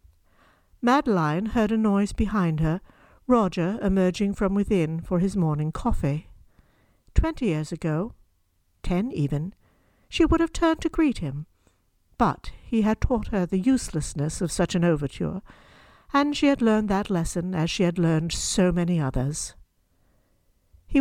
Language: English